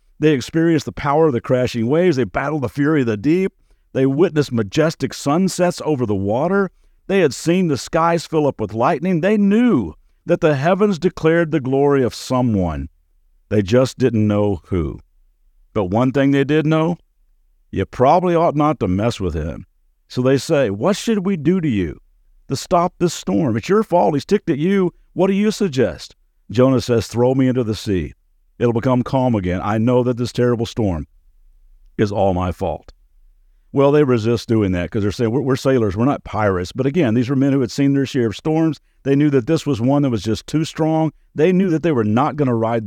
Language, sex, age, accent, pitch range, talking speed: English, male, 50-69, American, 110-160 Hz, 210 wpm